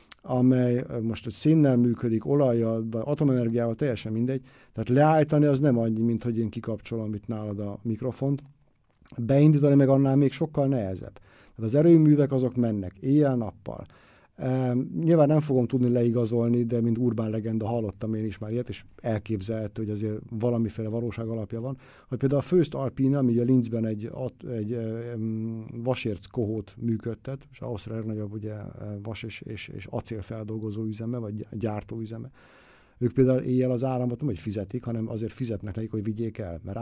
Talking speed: 165 wpm